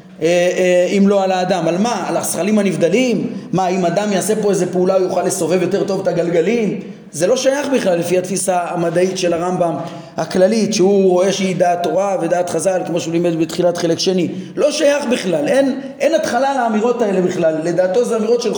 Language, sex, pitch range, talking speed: Hebrew, male, 185-235 Hz, 190 wpm